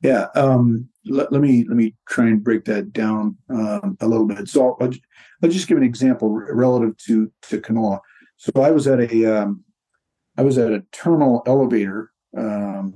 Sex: male